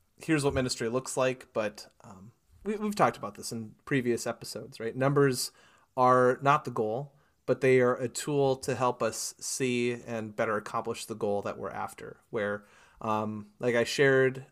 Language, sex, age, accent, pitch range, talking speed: English, male, 30-49, American, 115-140 Hz, 175 wpm